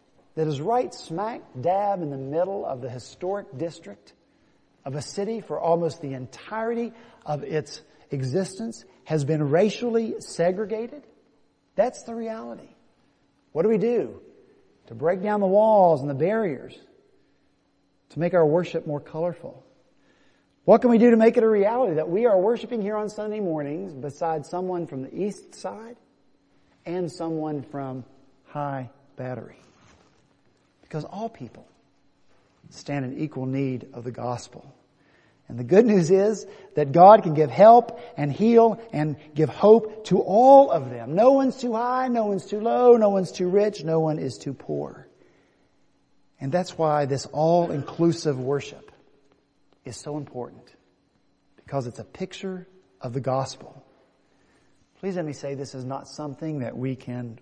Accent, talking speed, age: American, 155 wpm, 50-69